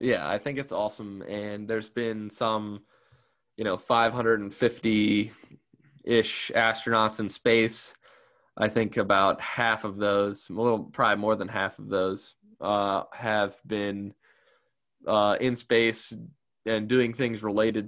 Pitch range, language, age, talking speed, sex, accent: 105-120 Hz, English, 10-29, 130 wpm, male, American